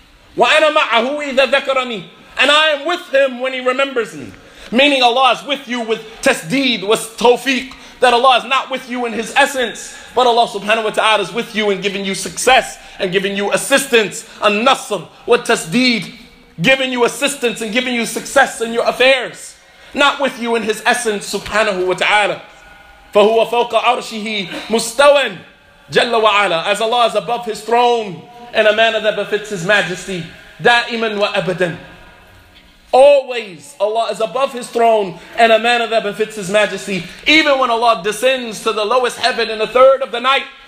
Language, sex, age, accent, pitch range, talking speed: English, male, 30-49, American, 205-260 Hz, 165 wpm